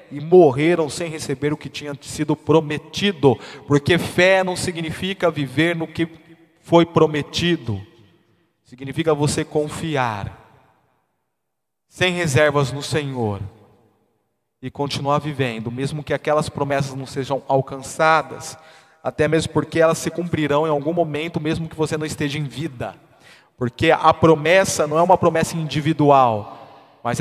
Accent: Brazilian